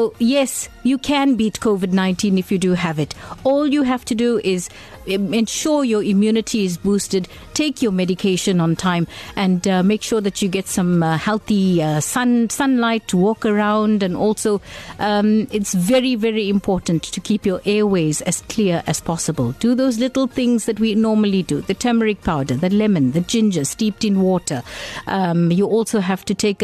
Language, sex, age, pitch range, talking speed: English, female, 60-79, 185-240 Hz, 180 wpm